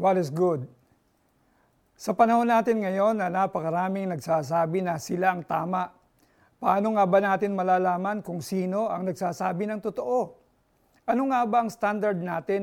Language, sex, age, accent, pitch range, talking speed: Filipino, male, 50-69, native, 175-215 Hz, 145 wpm